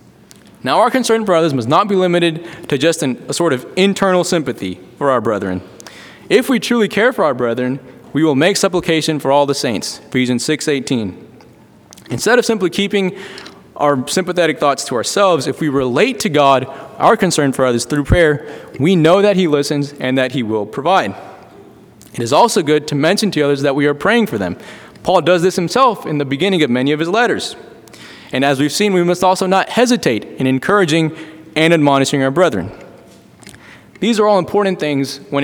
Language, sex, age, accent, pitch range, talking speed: English, male, 20-39, American, 145-195 Hz, 195 wpm